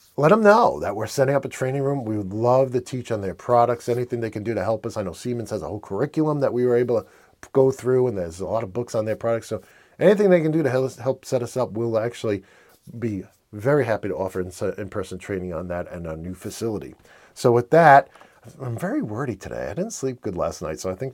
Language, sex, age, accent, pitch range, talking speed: English, male, 40-59, American, 110-155 Hz, 255 wpm